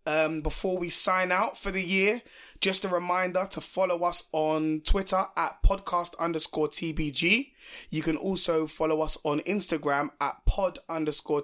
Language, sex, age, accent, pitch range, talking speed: English, male, 20-39, British, 150-175 Hz, 155 wpm